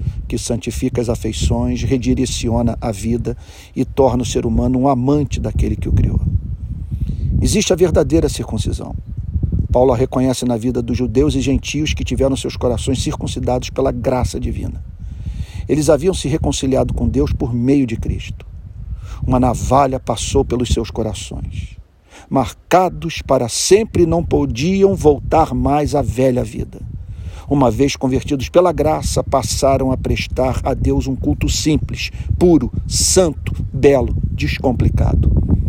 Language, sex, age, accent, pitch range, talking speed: Portuguese, male, 50-69, Brazilian, 100-135 Hz, 140 wpm